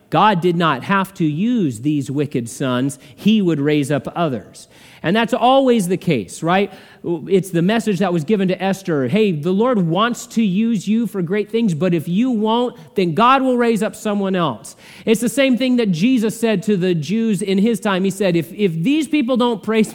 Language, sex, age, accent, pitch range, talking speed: English, male, 40-59, American, 155-215 Hz, 210 wpm